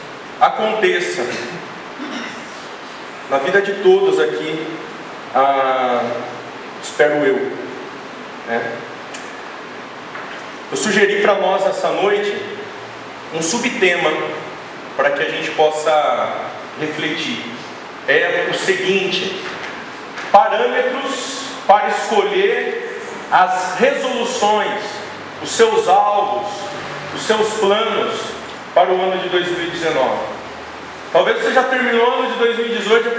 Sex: male